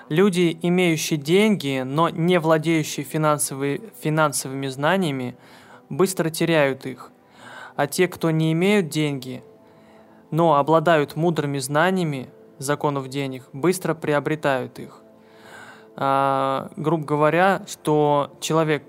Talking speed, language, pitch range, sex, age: 95 wpm, Russian, 135-165 Hz, male, 20-39